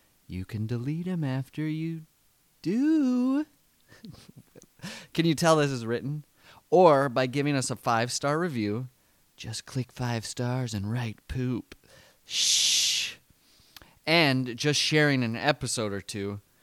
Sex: male